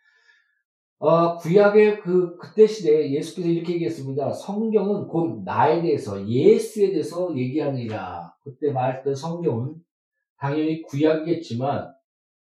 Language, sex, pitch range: Korean, male, 145-185 Hz